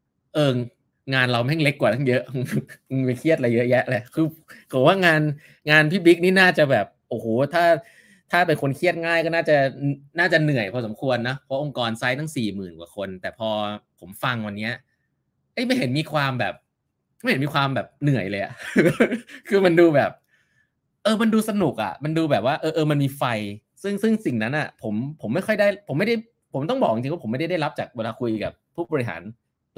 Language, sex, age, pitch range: Thai, male, 20-39, 120-160 Hz